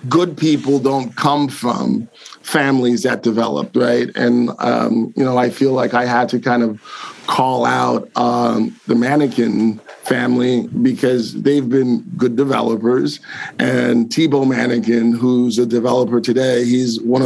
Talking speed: 145 wpm